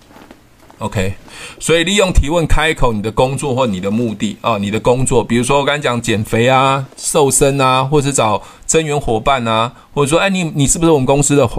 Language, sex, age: Chinese, male, 20-39